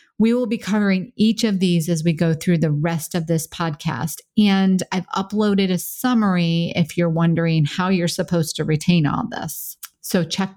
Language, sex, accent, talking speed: English, female, American, 185 wpm